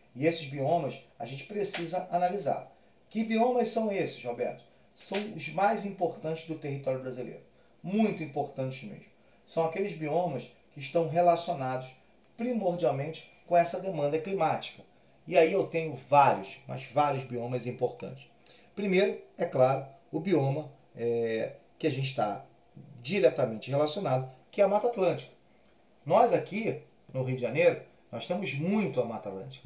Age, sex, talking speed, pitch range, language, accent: 30-49, male, 140 wpm, 130-175 Hz, Portuguese, Brazilian